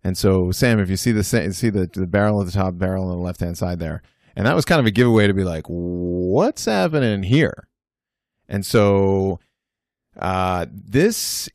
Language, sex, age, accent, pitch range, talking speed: English, male, 30-49, American, 95-120 Hz, 190 wpm